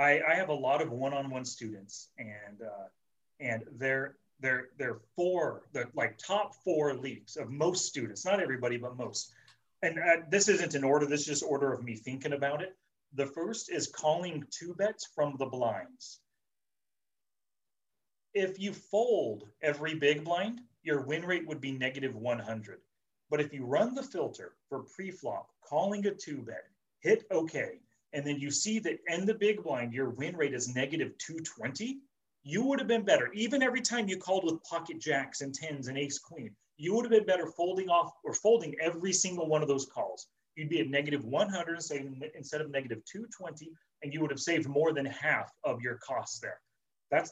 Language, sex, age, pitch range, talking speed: English, male, 30-49, 135-185 Hz, 185 wpm